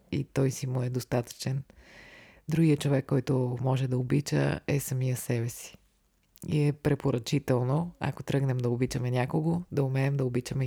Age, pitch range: 20-39, 130-150 Hz